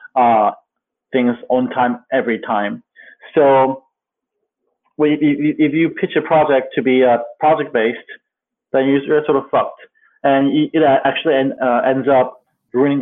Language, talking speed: English, 135 wpm